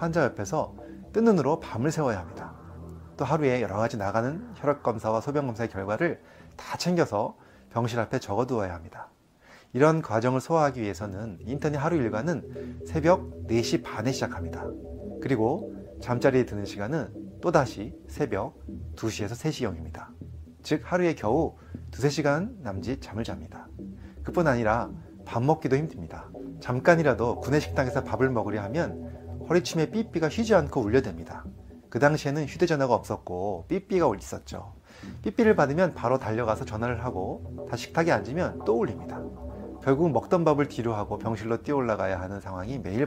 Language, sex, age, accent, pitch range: Korean, male, 30-49, native, 95-145 Hz